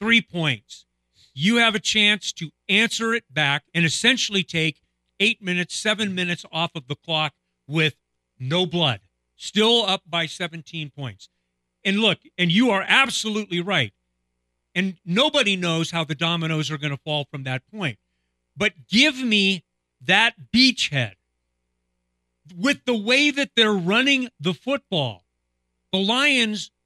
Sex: male